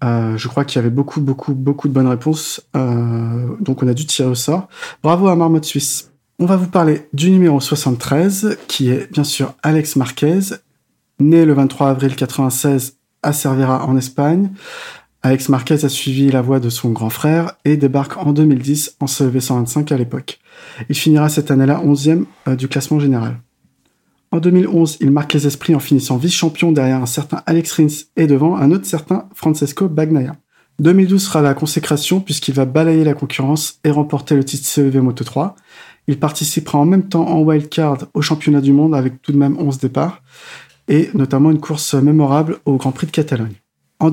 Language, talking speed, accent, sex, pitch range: French, 185 wpm, French, male, 135-155 Hz